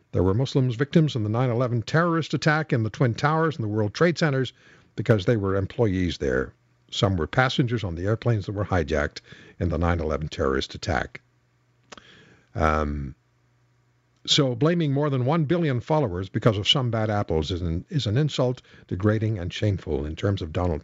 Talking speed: 175 wpm